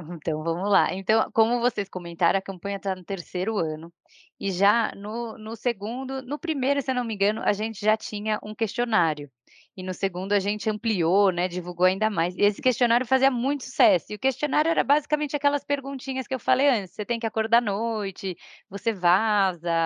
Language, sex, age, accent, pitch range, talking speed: Portuguese, female, 20-39, Brazilian, 185-250 Hz, 200 wpm